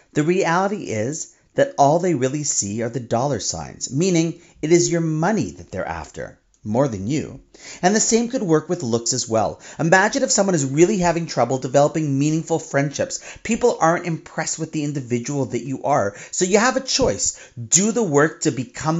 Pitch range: 125-175 Hz